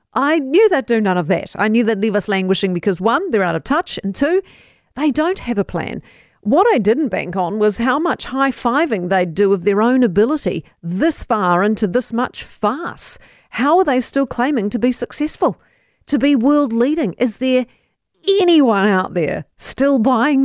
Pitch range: 205-295 Hz